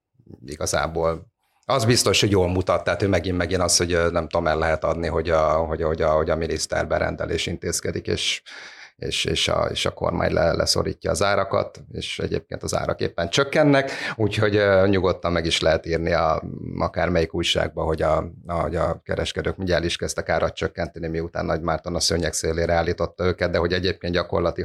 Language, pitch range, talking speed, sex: Hungarian, 85-100 Hz, 175 wpm, male